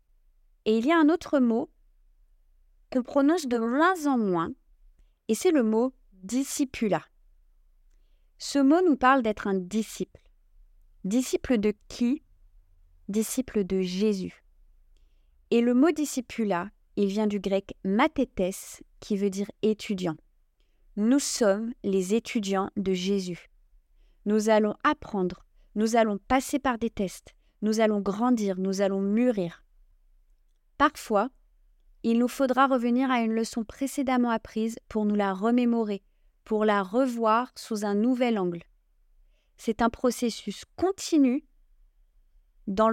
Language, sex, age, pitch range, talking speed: French, female, 30-49, 185-245 Hz, 125 wpm